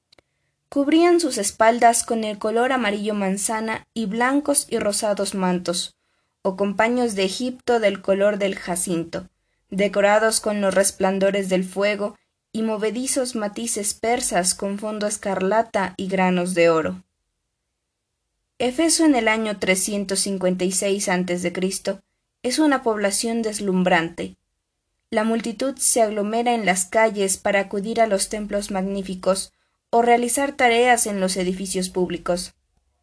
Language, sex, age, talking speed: Spanish, female, 20-39, 125 wpm